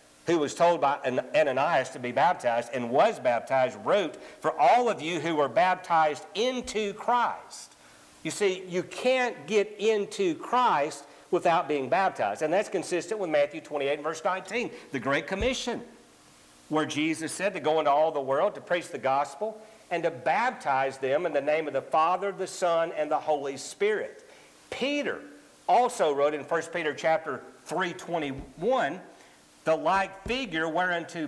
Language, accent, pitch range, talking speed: English, American, 140-210 Hz, 160 wpm